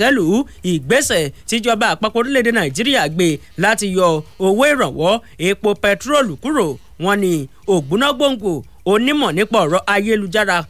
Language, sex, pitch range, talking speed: English, male, 185-245 Hz, 135 wpm